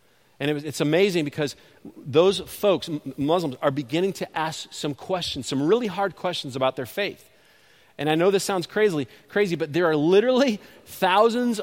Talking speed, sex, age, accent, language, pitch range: 160 wpm, male, 40-59, American, English, 145-195 Hz